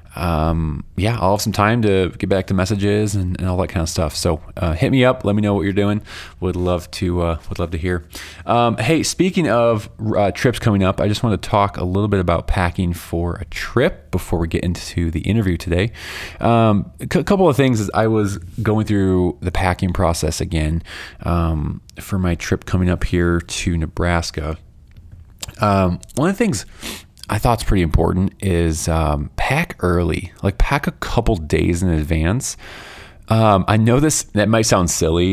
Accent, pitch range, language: American, 85-110 Hz, English